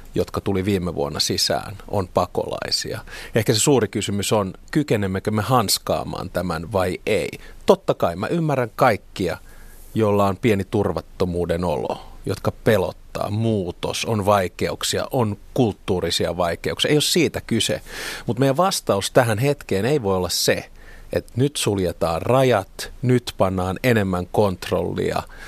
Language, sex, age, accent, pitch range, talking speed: Finnish, male, 40-59, native, 95-115 Hz, 135 wpm